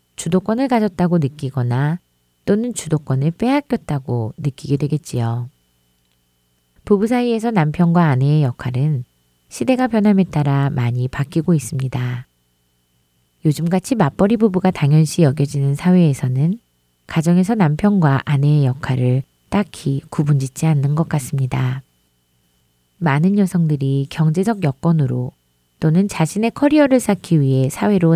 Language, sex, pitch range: Korean, female, 125-180 Hz